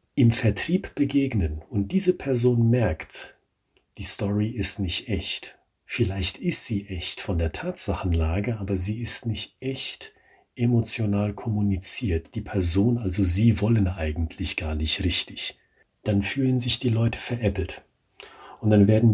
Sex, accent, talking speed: male, German, 140 wpm